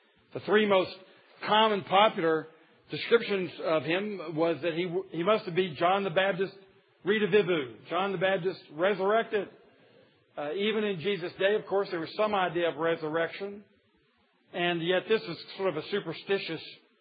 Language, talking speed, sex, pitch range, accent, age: English, 160 wpm, male, 180-215 Hz, American, 50-69